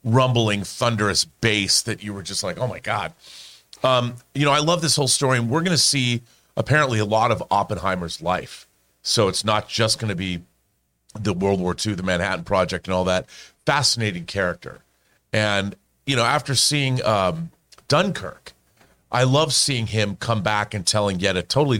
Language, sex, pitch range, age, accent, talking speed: English, male, 100-135 Hz, 40-59, American, 185 wpm